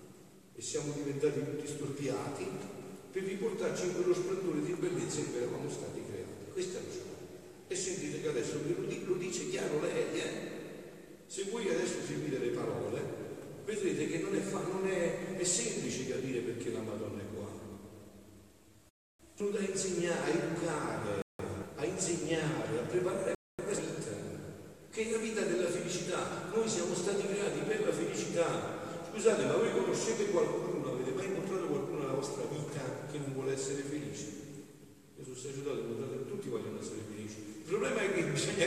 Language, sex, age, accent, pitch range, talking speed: Italian, male, 50-69, native, 150-235 Hz, 165 wpm